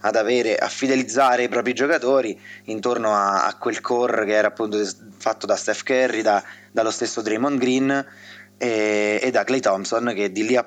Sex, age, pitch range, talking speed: male, 20-39, 105-120 Hz, 185 wpm